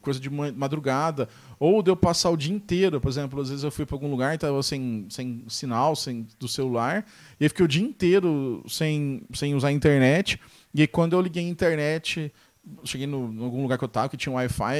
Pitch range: 140-195 Hz